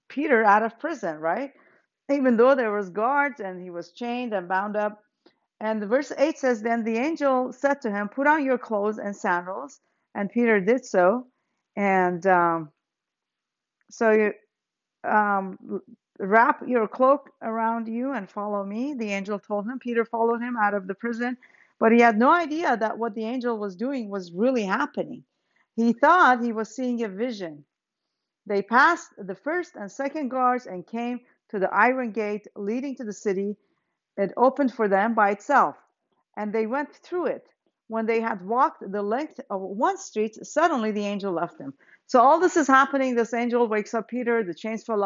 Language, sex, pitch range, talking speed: English, female, 200-255 Hz, 185 wpm